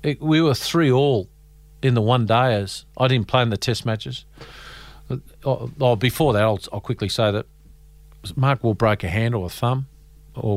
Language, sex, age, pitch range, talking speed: English, male, 50-69, 100-140 Hz, 200 wpm